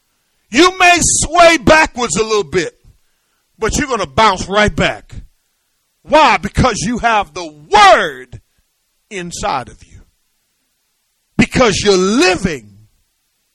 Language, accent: English, American